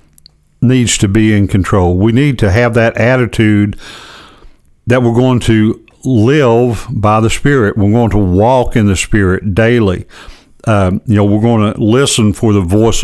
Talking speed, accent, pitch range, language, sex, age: 170 wpm, American, 100-120 Hz, English, male, 60-79